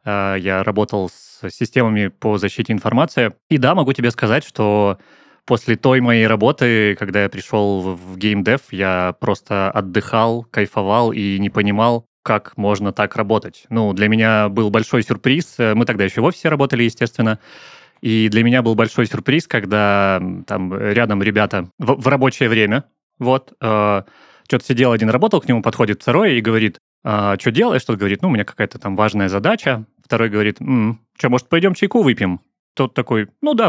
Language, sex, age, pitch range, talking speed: Russian, male, 20-39, 105-125 Hz, 170 wpm